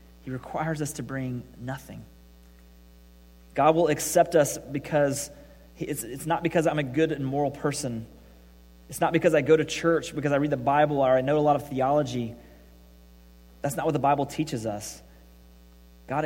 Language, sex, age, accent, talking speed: English, male, 30-49, American, 180 wpm